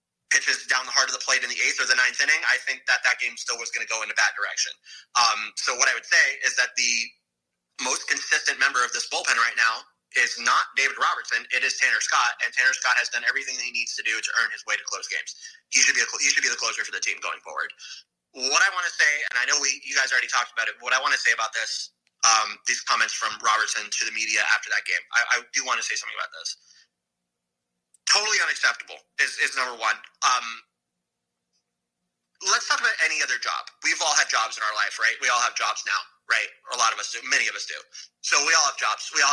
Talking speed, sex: 260 wpm, male